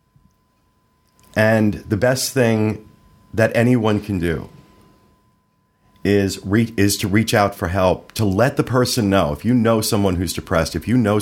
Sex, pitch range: male, 85-110 Hz